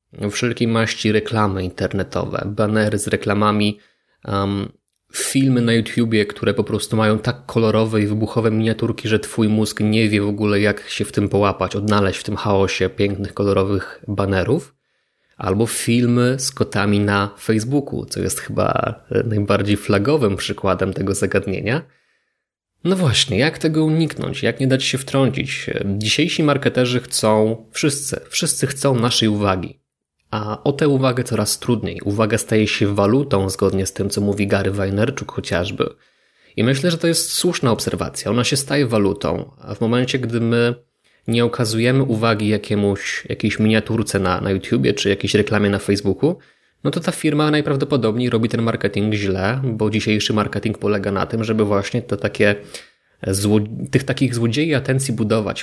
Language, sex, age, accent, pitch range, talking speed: Polish, male, 20-39, native, 100-125 Hz, 155 wpm